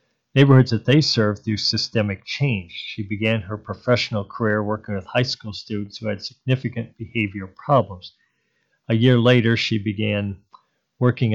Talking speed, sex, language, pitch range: 150 wpm, male, English, 105-120 Hz